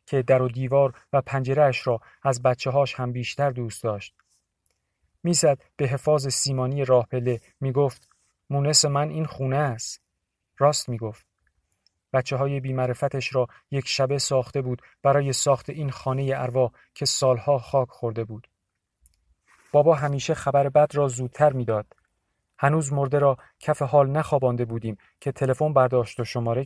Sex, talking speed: male, 145 wpm